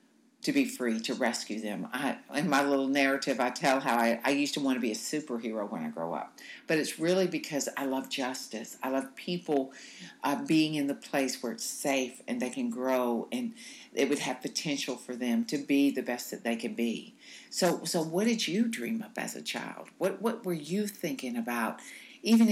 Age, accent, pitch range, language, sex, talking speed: 60-79, American, 140-235 Hz, English, female, 215 wpm